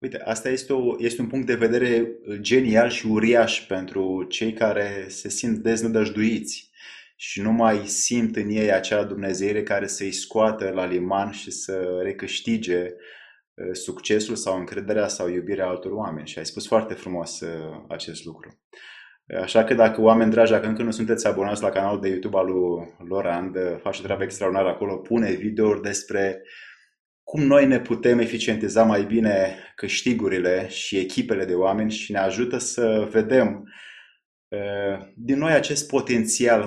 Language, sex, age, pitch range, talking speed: Romanian, male, 20-39, 95-115 Hz, 150 wpm